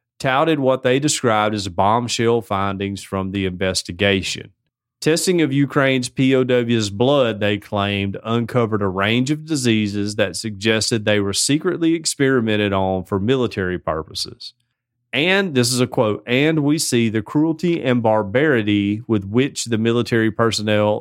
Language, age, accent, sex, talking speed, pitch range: English, 30-49, American, male, 140 wpm, 105-130 Hz